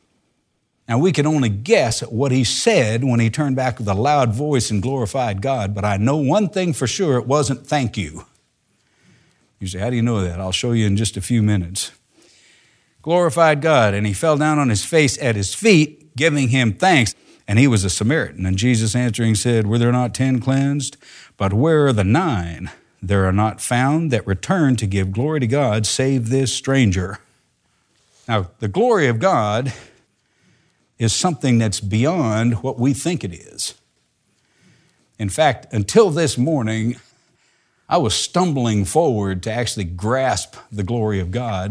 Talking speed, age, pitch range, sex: 180 wpm, 60-79, 105-140 Hz, male